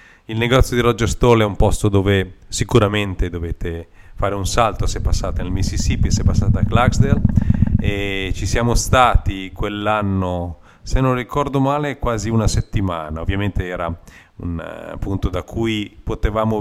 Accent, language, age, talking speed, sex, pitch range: native, Italian, 40-59, 150 wpm, male, 95-115 Hz